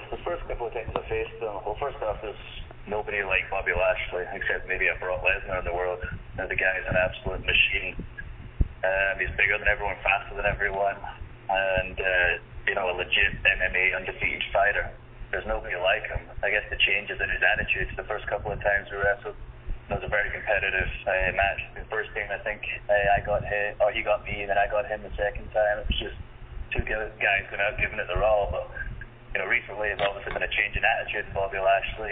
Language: English